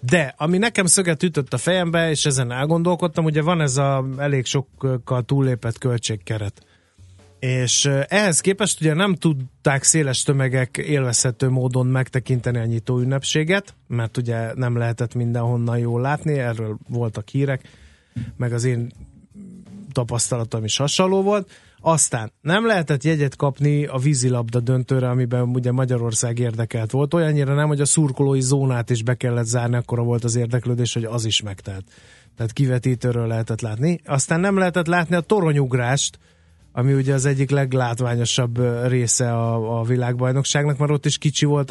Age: 30-49